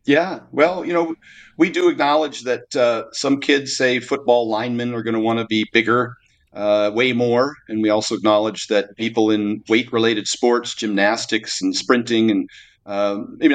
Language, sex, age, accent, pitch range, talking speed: English, male, 40-59, American, 105-125 Hz, 175 wpm